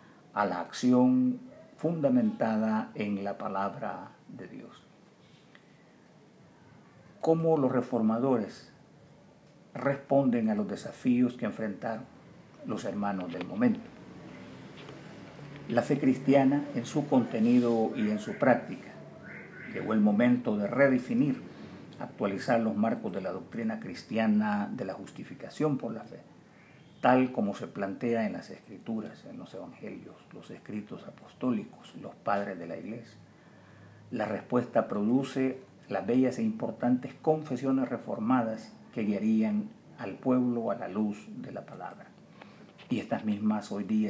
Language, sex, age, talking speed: Spanish, male, 50-69, 125 wpm